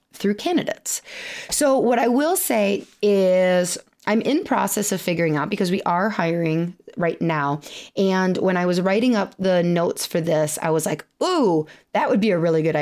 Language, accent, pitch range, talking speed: English, American, 165-225 Hz, 185 wpm